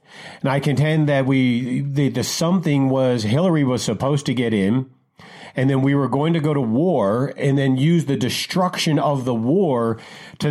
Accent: American